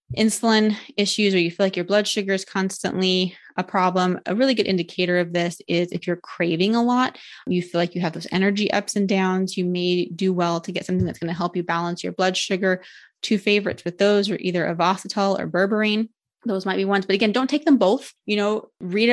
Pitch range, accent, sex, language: 180-210 Hz, American, female, English